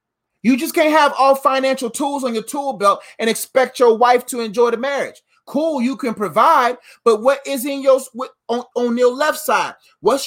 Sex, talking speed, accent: male, 200 wpm, American